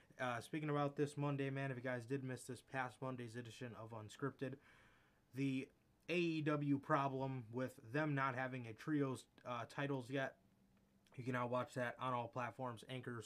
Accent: American